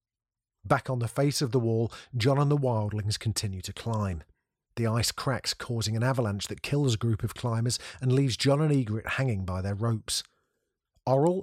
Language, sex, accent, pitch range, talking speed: English, male, British, 100-130 Hz, 190 wpm